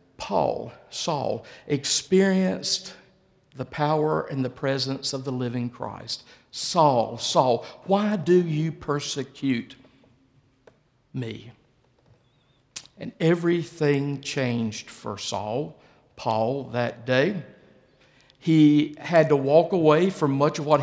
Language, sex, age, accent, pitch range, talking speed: English, male, 50-69, American, 130-160 Hz, 105 wpm